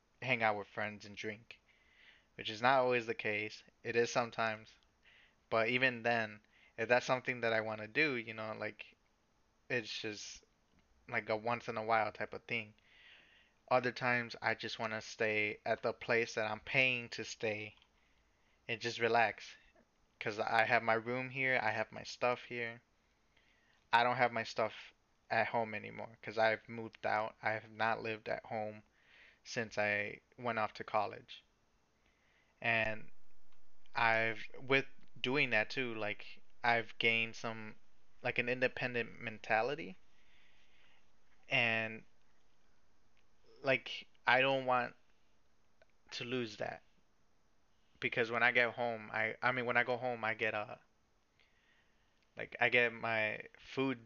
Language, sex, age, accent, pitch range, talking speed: English, male, 20-39, American, 110-120 Hz, 150 wpm